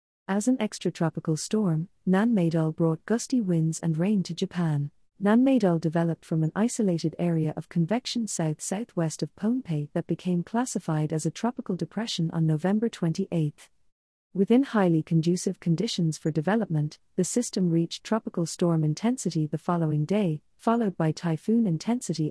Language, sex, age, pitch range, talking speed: English, female, 40-59, 160-210 Hz, 140 wpm